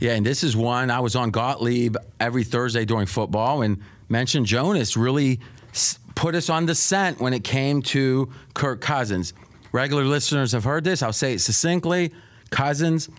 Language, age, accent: English, 30-49, American